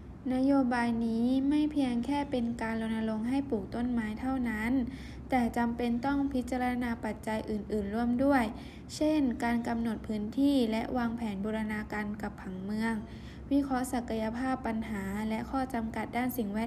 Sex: female